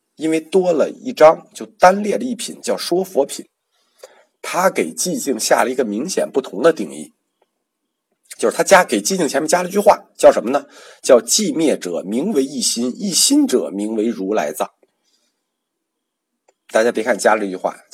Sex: male